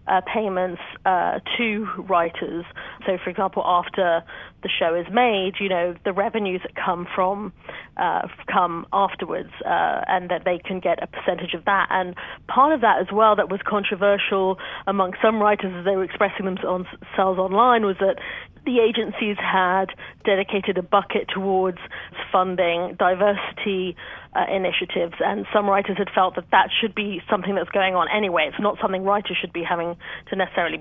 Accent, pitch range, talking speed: British, 185-205 Hz, 170 wpm